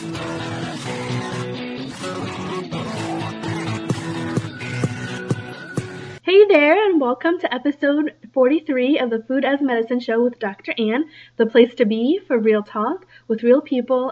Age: 20-39